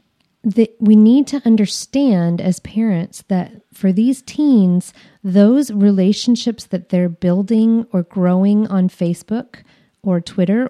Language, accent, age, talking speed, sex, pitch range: English, American, 30-49, 125 wpm, female, 175-210 Hz